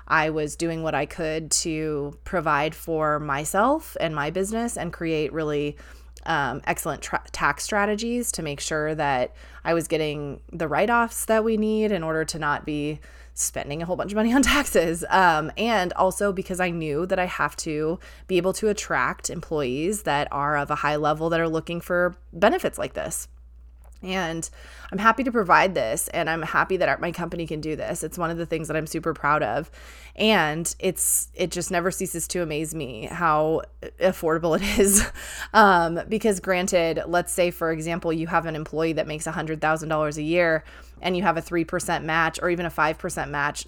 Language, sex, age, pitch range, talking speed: English, female, 20-39, 150-180 Hz, 190 wpm